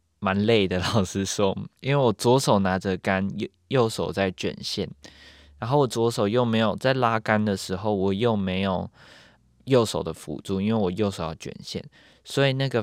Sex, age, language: male, 20-39, Chinese